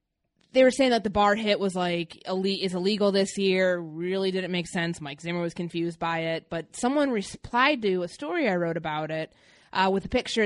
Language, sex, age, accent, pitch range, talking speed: English, female, 20-39, American, 175-220 Hz, 220 wpm